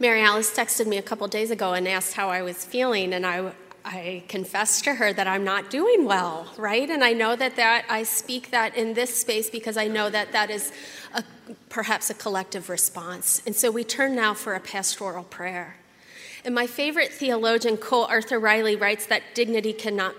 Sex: female